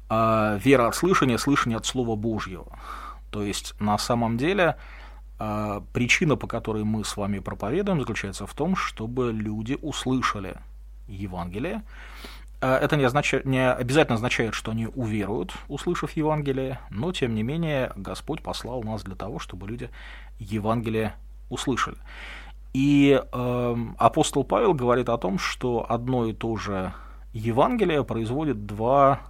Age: 30-49